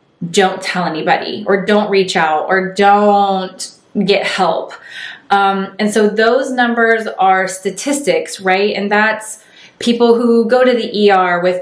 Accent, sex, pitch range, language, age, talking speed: American, female, 180-210 Hz, English, 20-39, 145 wpm